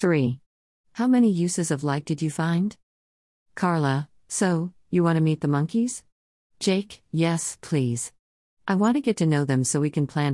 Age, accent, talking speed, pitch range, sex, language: 50-69, American, 180 wpm, 130-180 Hz, female, English